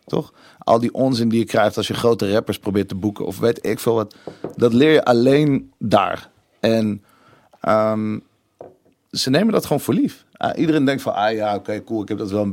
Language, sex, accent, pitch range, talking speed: Dutch, male, Dutch, 105-120 Hz, 210 wpm